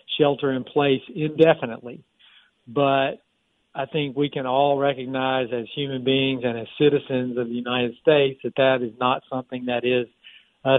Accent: American